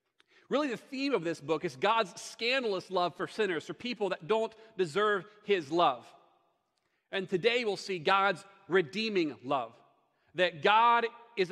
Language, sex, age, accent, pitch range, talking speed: English, male, 40-59, American, 165-205 Hz, 150 wpm